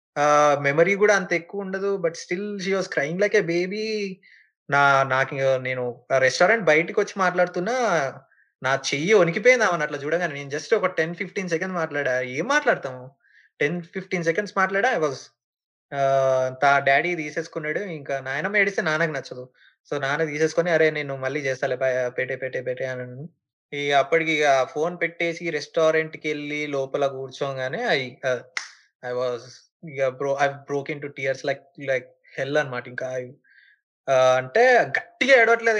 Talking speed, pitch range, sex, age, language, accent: 140 wpm, 135-180 Hz, male, 20-39, Telugu, native